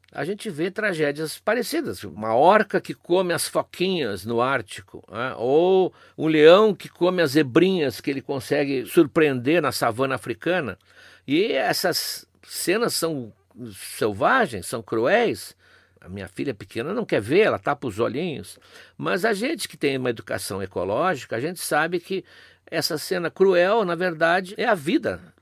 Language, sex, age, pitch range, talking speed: Portuguese, male, 60-79, 110-175 Hz, 155 wpm